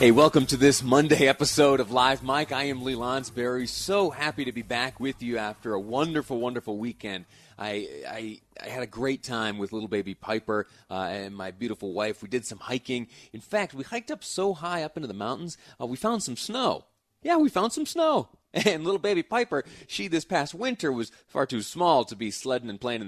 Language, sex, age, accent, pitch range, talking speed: English, male, 30-49, American, 105-150 Hz, 215 wpm